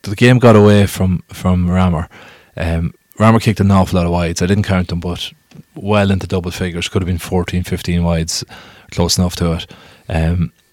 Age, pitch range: 20-39, 90-100 Hz